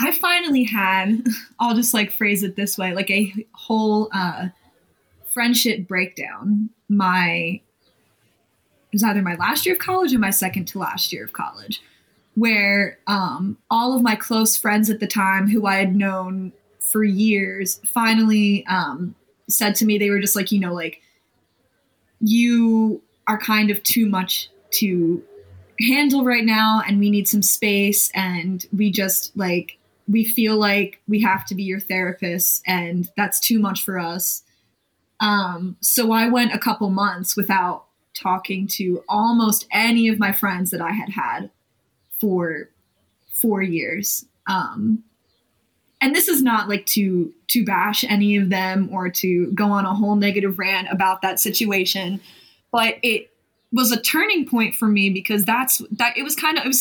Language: English